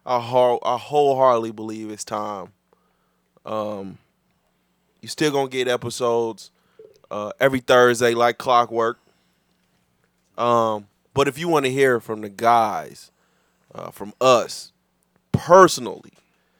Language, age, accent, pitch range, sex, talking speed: English, 20-39, American, 120-155 Hz, male, 110 wpm